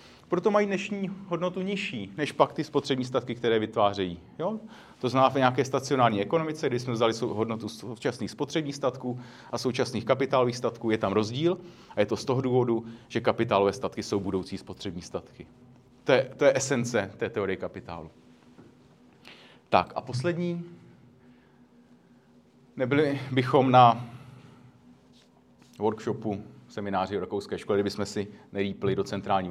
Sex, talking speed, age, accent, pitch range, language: male, 135 wpm, 30-49, native, 110-140 Hz, Czech